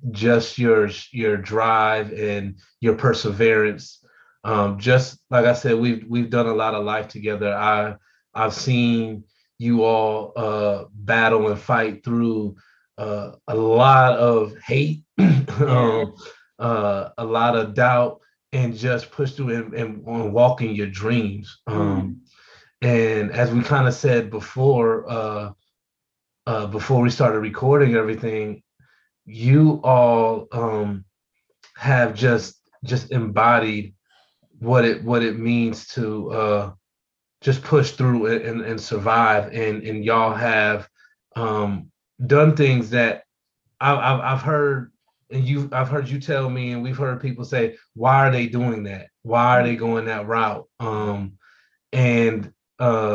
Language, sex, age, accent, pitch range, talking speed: English, male, 30-49, American, 105-125 Hz, 140 wpm